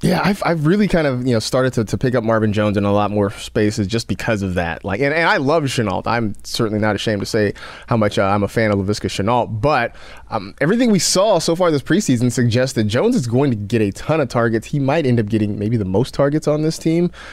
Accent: American